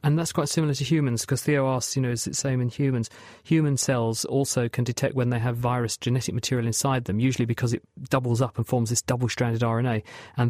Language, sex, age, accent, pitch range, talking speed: English, male, 40-59, British, 115-135 Hz, 235 wpm